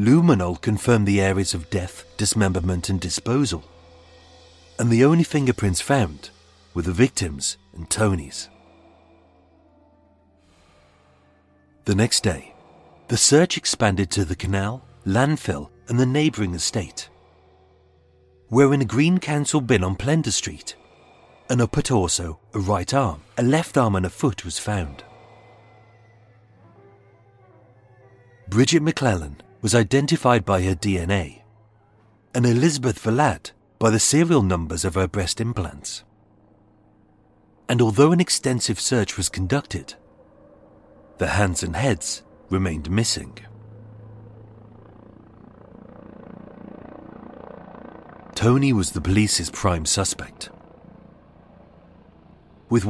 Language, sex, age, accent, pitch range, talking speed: English, male, 40-59, British, 90-120 Hz, 105 wpm